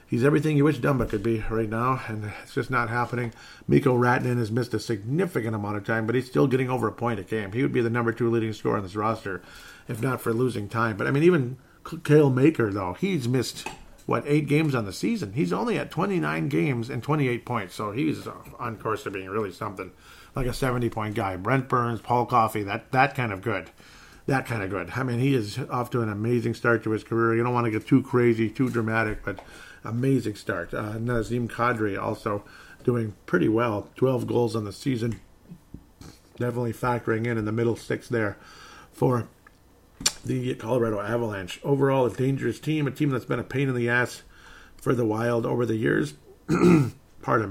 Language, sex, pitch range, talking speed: English, male, 110-130 Hz, 205 wpm